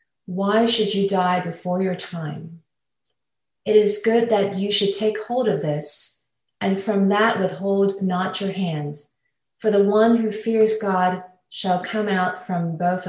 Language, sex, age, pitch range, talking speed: English, female, 30-49, 180-215 Hz, 160 wpm